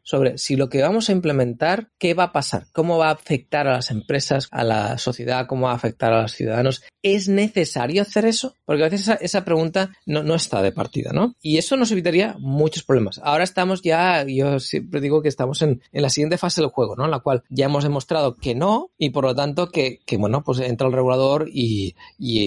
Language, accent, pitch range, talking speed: Spanish, Spanish, 125-165 Hz, 230 wpm